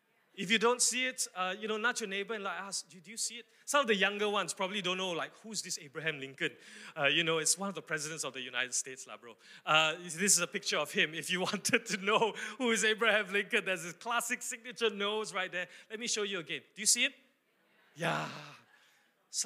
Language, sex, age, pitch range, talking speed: English, male, 20-39, 175-235 Hz, 250 wpm